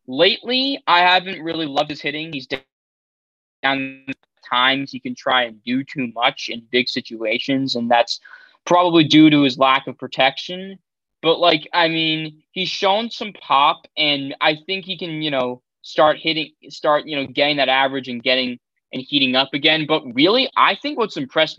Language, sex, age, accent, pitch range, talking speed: English, male, 20-39, American, 135-175 Hz, 185 wpm